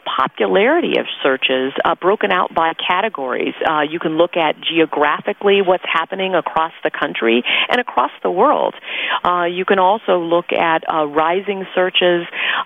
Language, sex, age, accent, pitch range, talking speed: English, female, 40-59, American, 150-175 Hz, 150 wpm